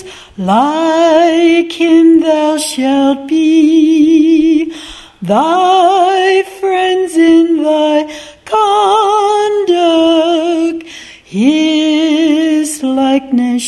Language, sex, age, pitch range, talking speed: English, female, 40-59, 275-330 Hz, 55 wpm